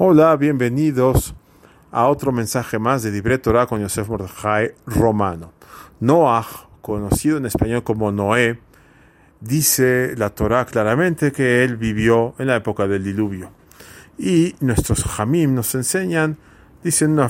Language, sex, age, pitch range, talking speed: English, male, 40-59, 110-155 Hz, 130 wpm